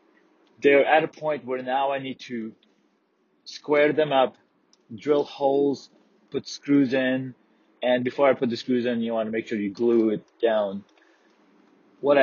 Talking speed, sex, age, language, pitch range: 165 wpm, male, 30-49, English, 110-140 Hz